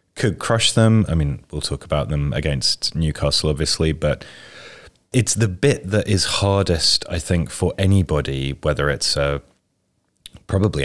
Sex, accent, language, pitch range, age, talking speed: male, British, English, 75-90 Hz, 30-49, 150 wpm